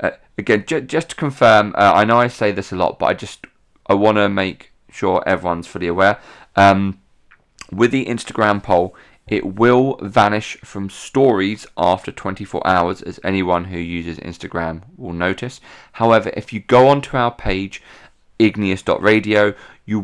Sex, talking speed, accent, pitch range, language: male, 160 wpm, British, 95-120 Hz, English